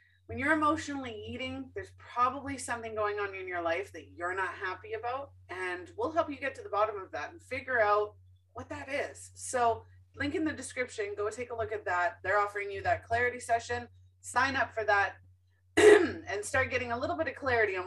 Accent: American